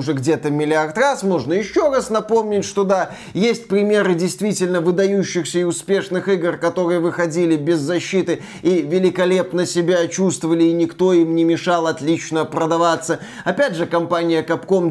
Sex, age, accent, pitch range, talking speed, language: male, 20-39, native, 165-205 Hz, 140 wpm, Russian